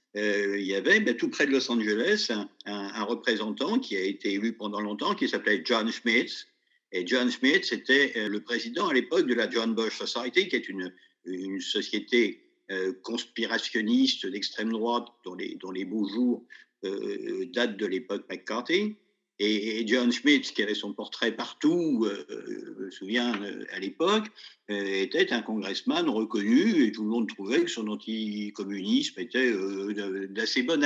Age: 50-69